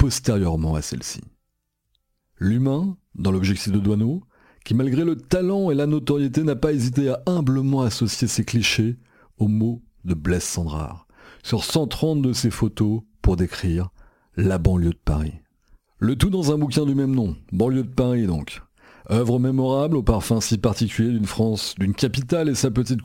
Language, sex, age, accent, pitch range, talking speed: French, male, 50-69, French, 100-130 Hz, 165 wpm